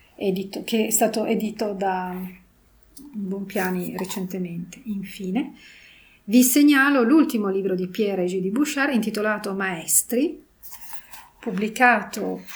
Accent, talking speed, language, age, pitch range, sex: native, 100 wpm, Italian, 40-59, 190-240 Hz, female